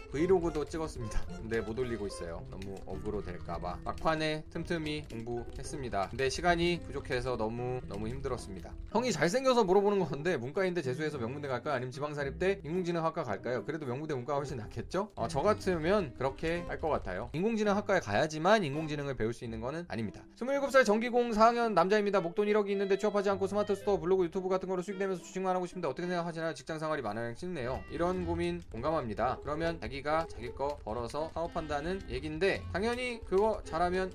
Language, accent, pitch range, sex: Korean, native, 135-205 Hz, male